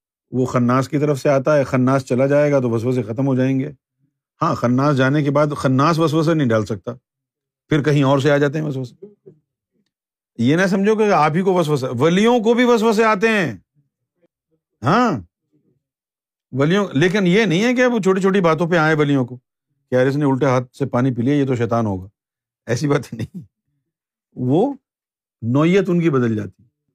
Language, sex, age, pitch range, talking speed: Urdu, male, 50-69, 130-175 Hz, 195 wpm